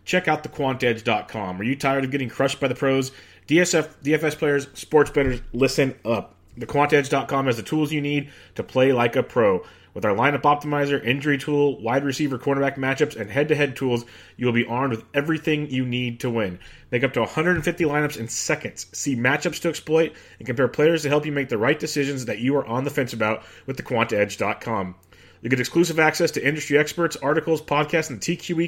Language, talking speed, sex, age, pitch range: English, 195 wpm, male, 30-49, 115-150 Hz